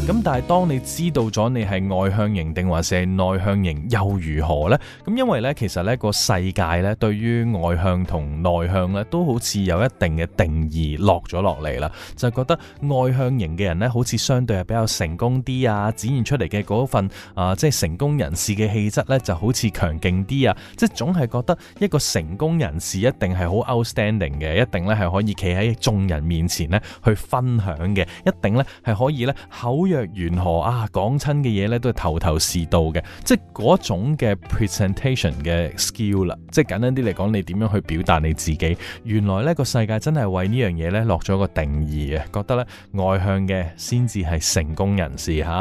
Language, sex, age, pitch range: Chinese, male, 20-39, 85-120 Hz